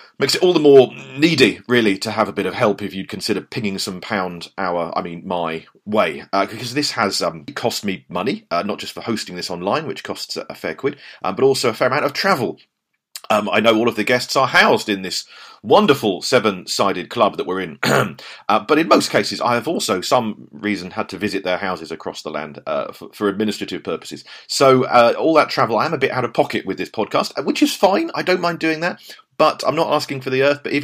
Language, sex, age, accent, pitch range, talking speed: English, male, 40-59, British, 105-145 Hz, 245 wpm